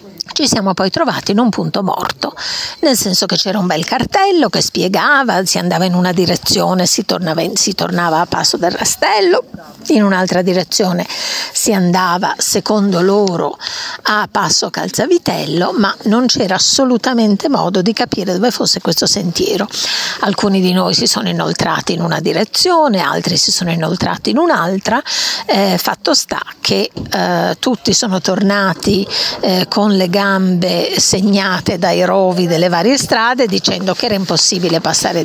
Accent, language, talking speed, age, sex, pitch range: native, Italian, 150 wpm, 50-69, female, 185-235 Hz